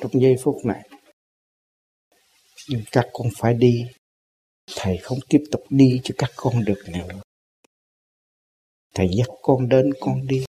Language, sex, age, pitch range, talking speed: Vietnamese, male, 60-79, 100-130 Hz, 140 wpm